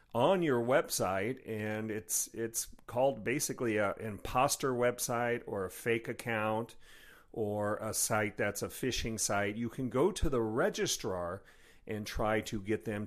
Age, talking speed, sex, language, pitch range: 40-59, 150 wpm, male, English, 105-135 Hz